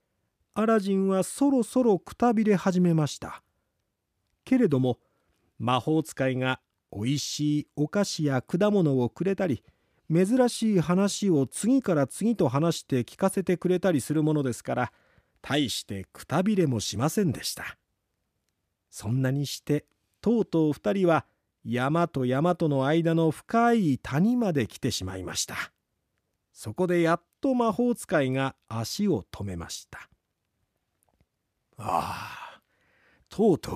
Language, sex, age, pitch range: Japanese, male, 40-59, 120-200 Hz